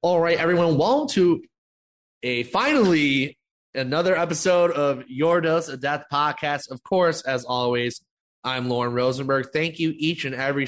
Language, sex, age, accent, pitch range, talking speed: English, male, 20-39, American, 125-155 Hz, 150 wpm